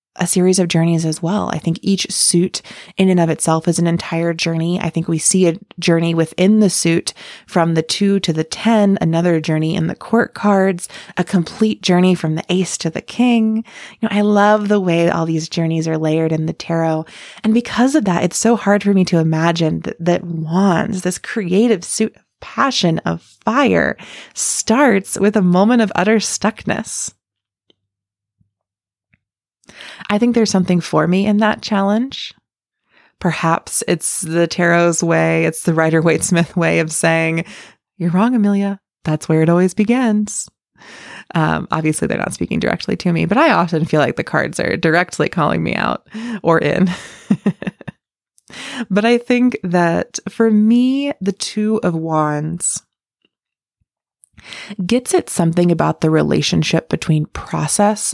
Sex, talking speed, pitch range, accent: female, 165 wpm, 165-210 Hz, American